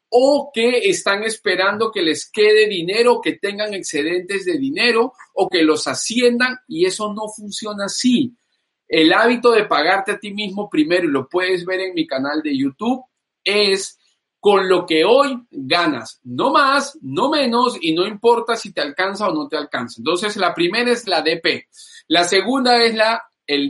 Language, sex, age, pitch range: Spanish, male, 40-59, 185-260 Hz